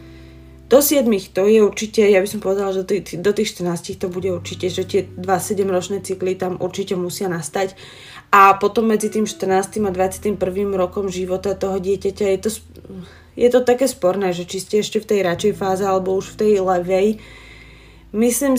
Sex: female